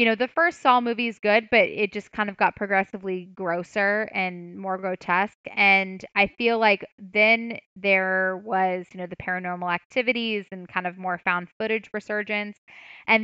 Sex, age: female, 10-29